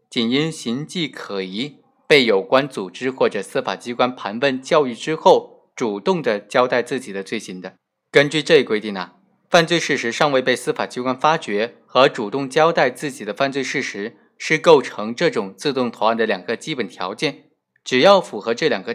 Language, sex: Chinese, male